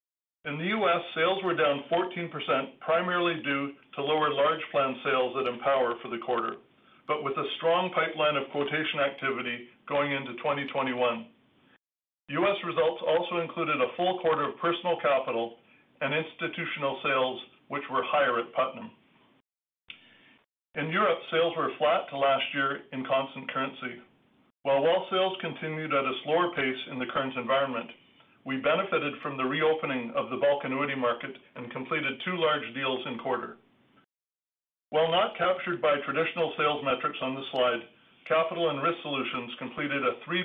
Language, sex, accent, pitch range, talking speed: English, male, American, 130-165 Hz, 155 wpm